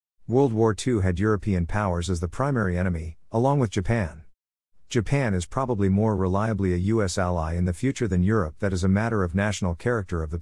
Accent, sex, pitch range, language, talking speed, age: American, male, 90-110 Hz, English, 200 wpm, 50-69